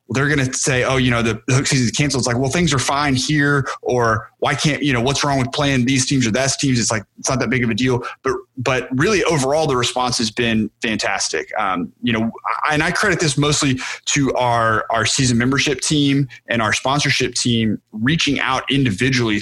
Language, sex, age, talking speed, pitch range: English, male, 20-39, 230 wpm, 115-140 Hz